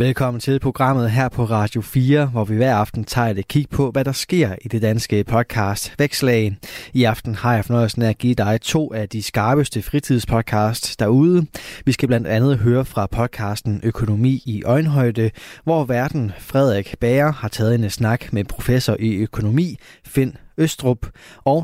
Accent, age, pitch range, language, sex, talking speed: native, 20-39, 110-135 Hz, Danish, male, 170 wpm